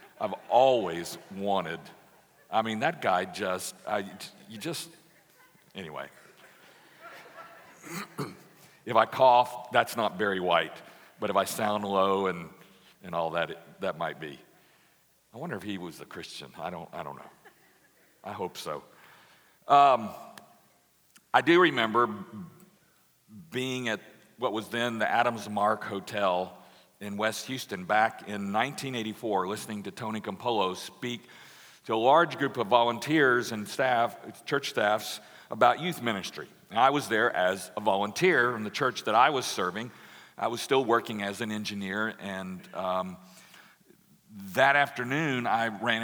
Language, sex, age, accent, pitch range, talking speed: English, male, 50-69, American, 100-130 Hz, 145 wpm